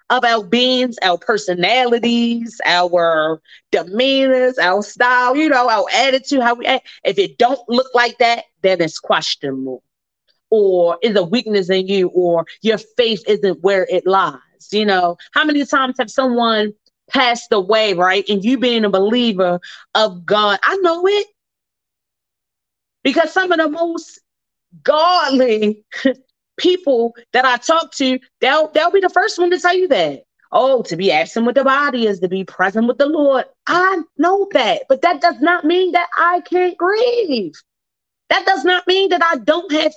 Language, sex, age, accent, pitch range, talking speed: English, female, 30-49, American, 210-315 Hz, 170 wpm